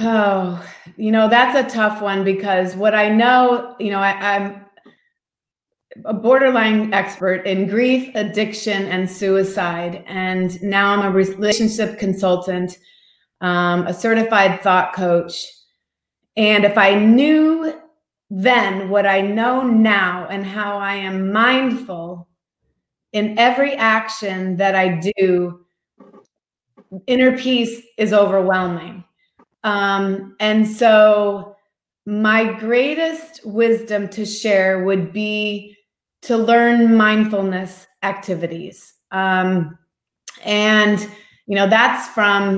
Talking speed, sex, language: 110 wpm, female, English